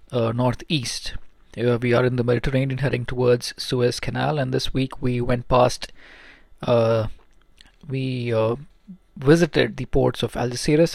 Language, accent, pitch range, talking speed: English, Indian, 120-135 Hz, 145 wpm